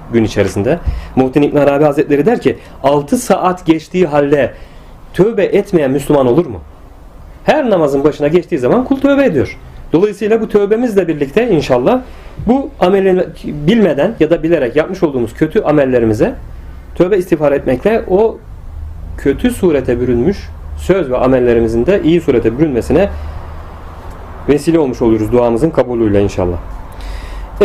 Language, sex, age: Turkish, male, 40-59